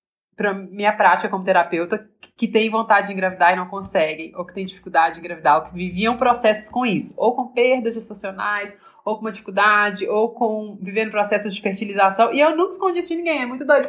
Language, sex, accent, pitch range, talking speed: Portuguese, female, Brazilian, 205-275 Hz, 210 wpm